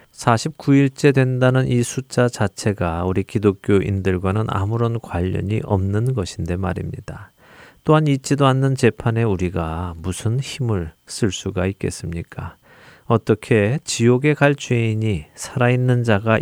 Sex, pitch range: male, 95-120 Hz